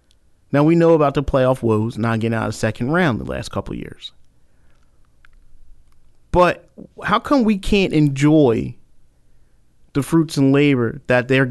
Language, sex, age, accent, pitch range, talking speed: English, male, 30-49, American, 115-165 Hz, 155 wpm